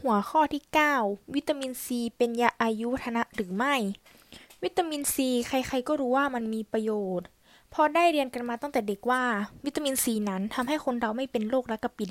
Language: Thai